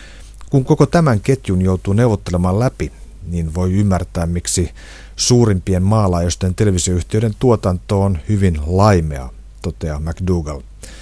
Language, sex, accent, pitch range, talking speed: Finnish, male, native, 85-105 Hz, 110 wpm